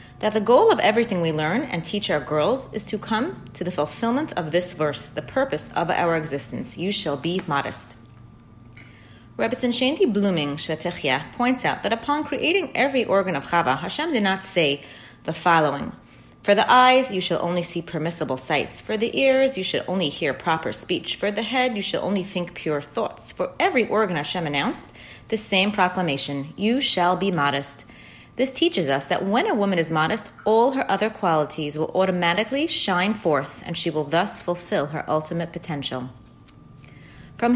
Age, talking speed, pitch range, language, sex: 30-49, 180 wpm, 150-225 Hz, English, female